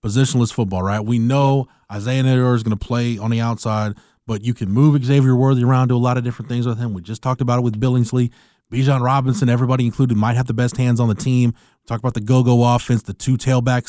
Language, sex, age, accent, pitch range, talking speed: English, male, 20-39, American, 115-140 Hz, 250 wpm